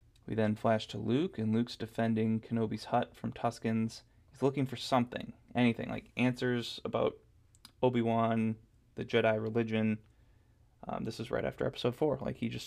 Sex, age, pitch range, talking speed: male, 20-39, 110-125 Hz, 160 wpm